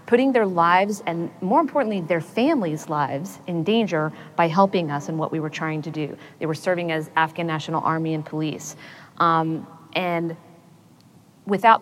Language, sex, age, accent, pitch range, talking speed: English, female, 40-59, American, 160-190 Hz, 170 wpm